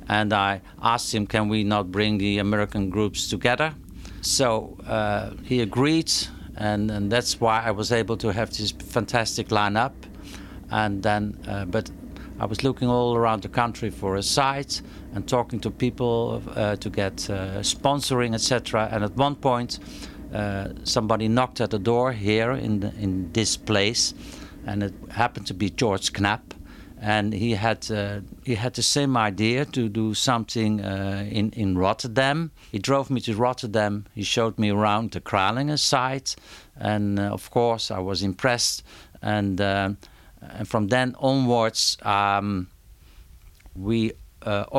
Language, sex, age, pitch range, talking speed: English, male, 50-69, 100-120 Hz, 160 wpm